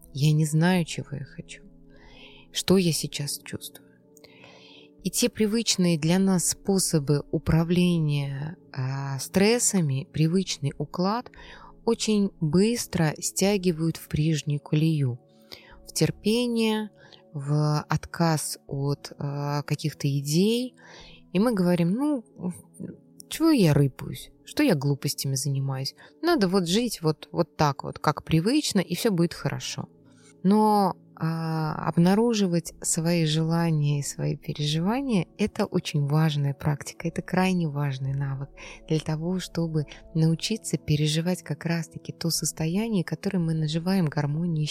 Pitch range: 145-185 Hz